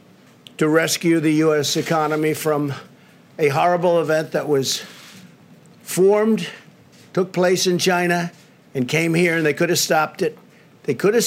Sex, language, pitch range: male, English, 155-180 Hz